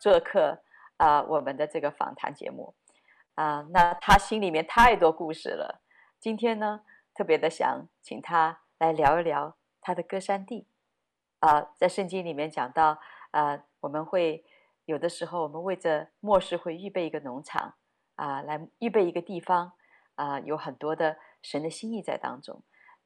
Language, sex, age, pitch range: Chinese, female, 30-49, 155-205 Hz